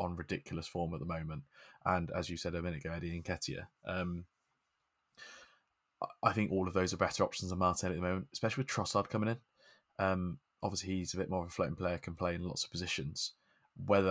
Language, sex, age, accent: English, male, 20-39, British